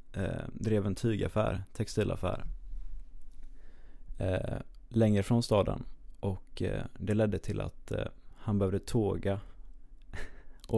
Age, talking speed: 20-39, 105 wpm